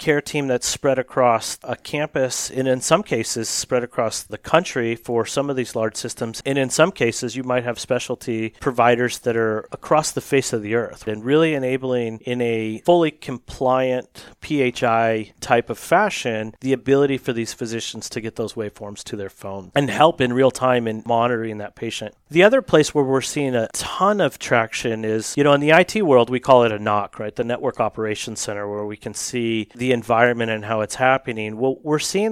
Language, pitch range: English, 110-140 Hz